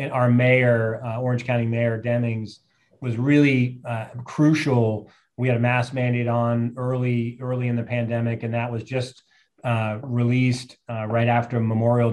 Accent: American